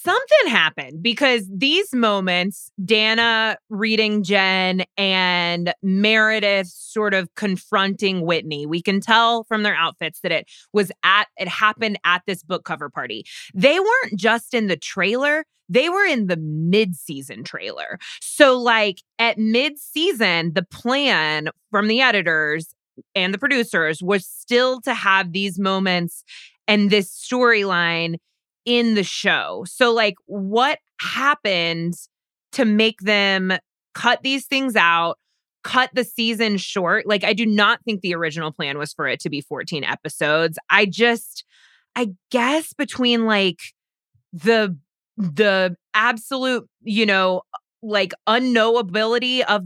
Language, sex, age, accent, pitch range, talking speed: English, female, 20-39, American, 180-230 Hz, 135 wpm